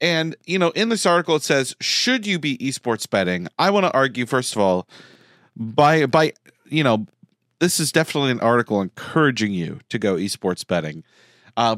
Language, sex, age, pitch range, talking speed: English, male, 40-59, 120-160 Hz, 185 wpm